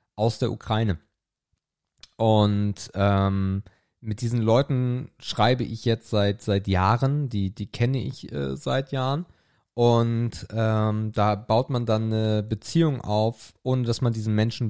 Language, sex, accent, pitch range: German, male, German, 100-120 Hz